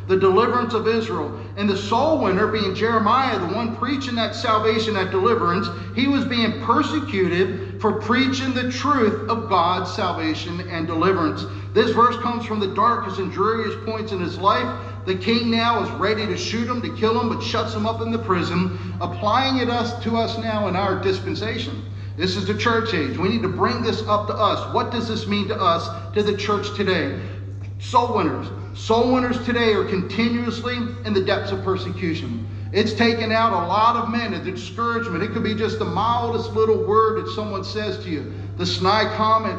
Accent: American